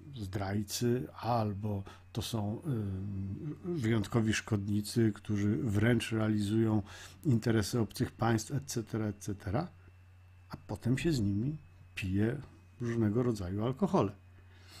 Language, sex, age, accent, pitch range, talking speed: Polish, male, 50-69, native, 95-140 Hz, 95 wpm